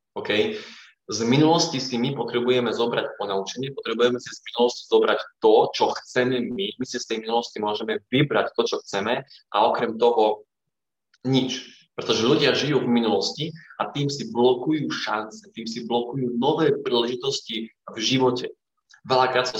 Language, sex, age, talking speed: Slovak, male, 20-39, 150 wpm